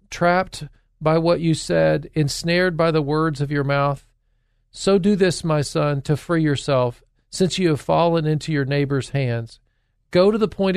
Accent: American